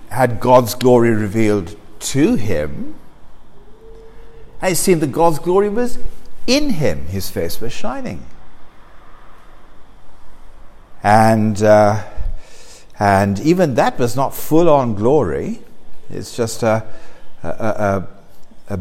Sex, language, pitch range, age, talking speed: male, English, 105-150 Hz, 60-79, 100 wpm